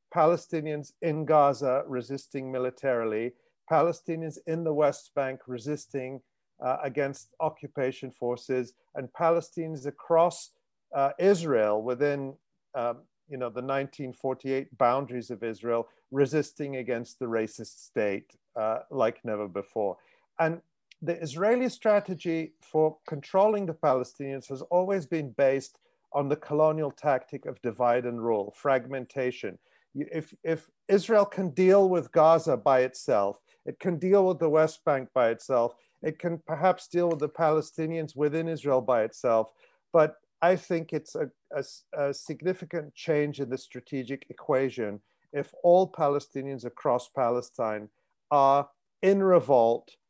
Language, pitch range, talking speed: English, 130-165 Hz, 130 wpm